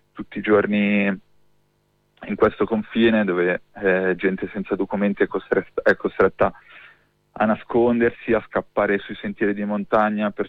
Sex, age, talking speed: male, 20-39, 135 wpm